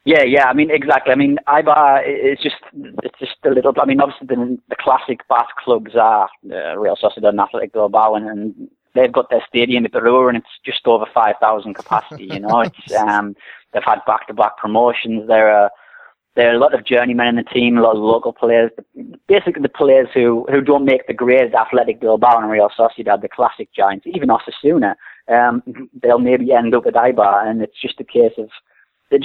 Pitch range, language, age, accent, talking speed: 110-130 Hz, English, 30-49, British, 210 wpm